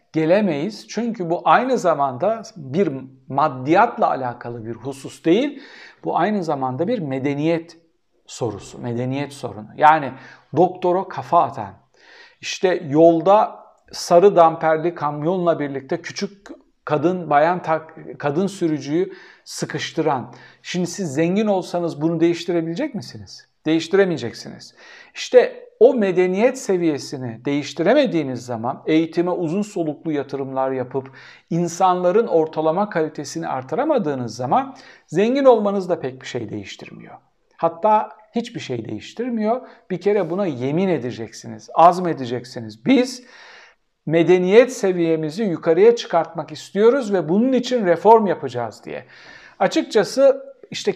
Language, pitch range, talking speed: Turkish, 145-200 Hz, 105 wpm